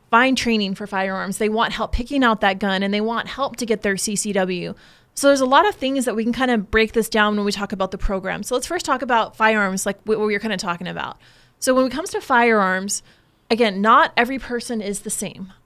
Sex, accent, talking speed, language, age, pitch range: female, American, 255 wpm, English, 20-39, 205-245 Hz